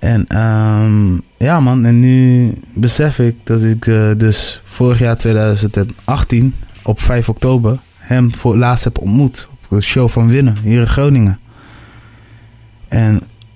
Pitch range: 100-125 Hz